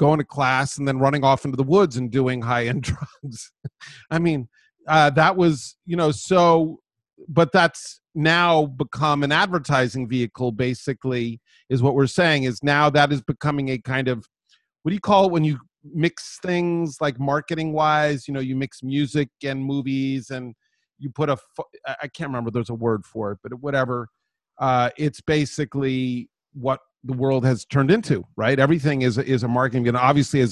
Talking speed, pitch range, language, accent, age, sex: 185 wpm, 120-150 Hz, English, American, 40-59, male